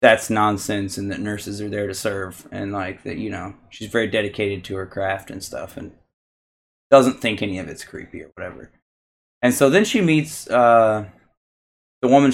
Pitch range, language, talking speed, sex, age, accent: 100-140 Hz, English, 190 wpm, male, 20-39, American